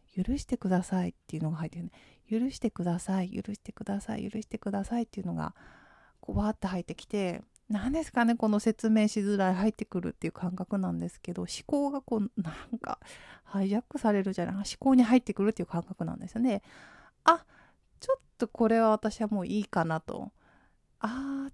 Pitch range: 185-245 Hz